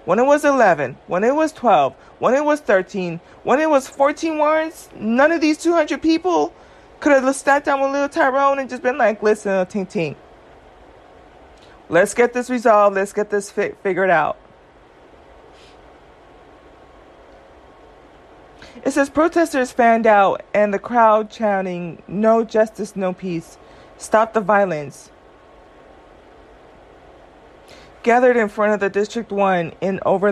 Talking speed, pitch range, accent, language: 140 wpm, 185-245 Hz, American, English